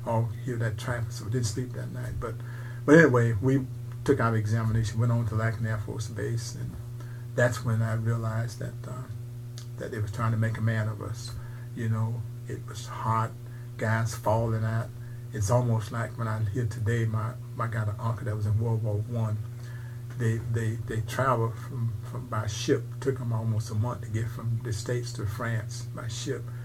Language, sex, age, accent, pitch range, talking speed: English, male, 50-69, American, 115-120 Hz, 205 wpm